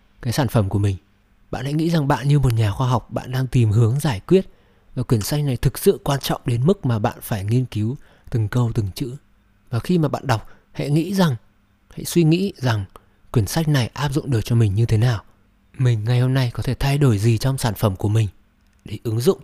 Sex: male